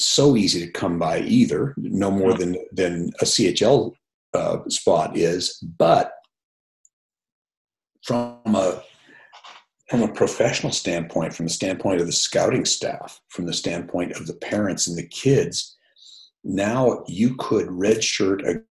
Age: 50-69